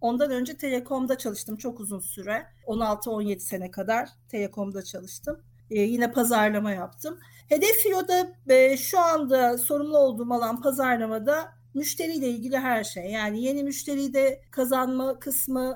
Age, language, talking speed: 50-69, Turkish, 135 wpm